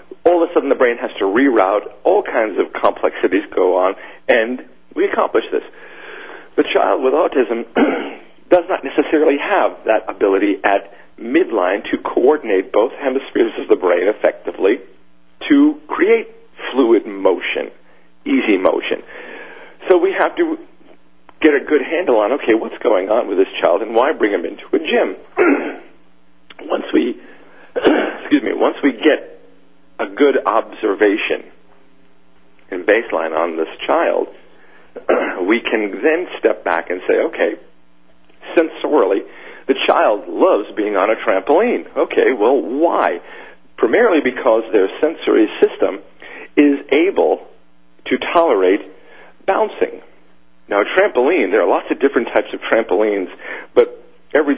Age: 50-69